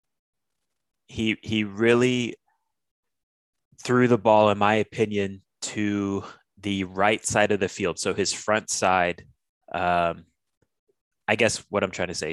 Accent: American